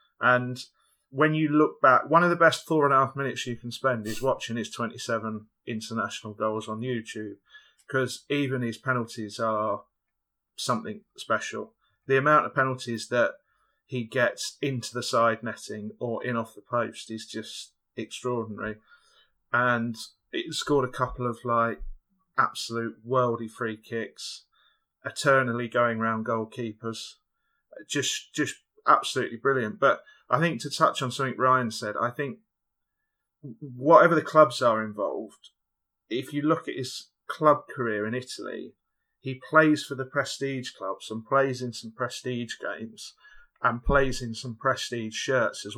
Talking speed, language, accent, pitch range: 150 wpm, English, British, 115-135 Hz